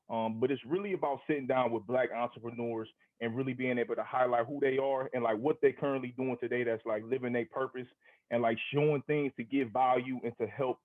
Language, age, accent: English, 20-39, American